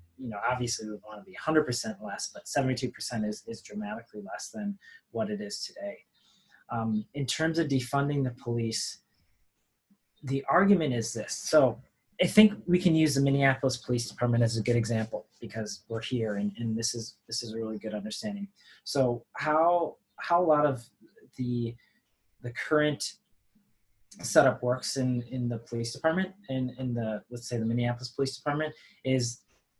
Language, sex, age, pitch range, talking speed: English, male, 30-49, 115-140 Hz, 175 wpm